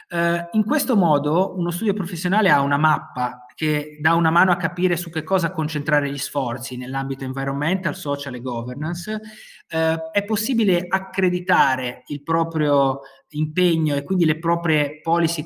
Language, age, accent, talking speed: Italian, 30-49, native, 145 wpm